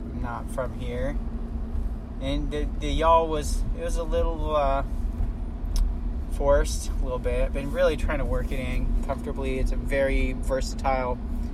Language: English